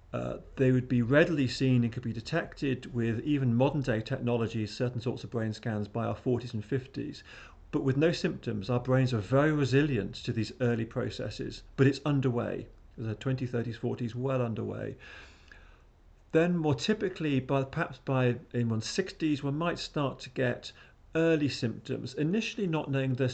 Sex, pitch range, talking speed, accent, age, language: male, 115-135 Hz, 170 wpm, British, 40-59, English